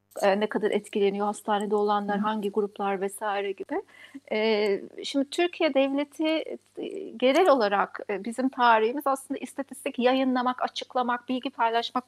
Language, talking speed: Turkish, 110 wpm